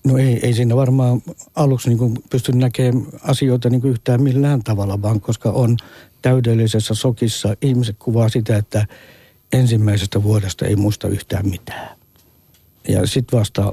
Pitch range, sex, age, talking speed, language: 105-125 Hz, male, 60-79, 130 wpm, Finnish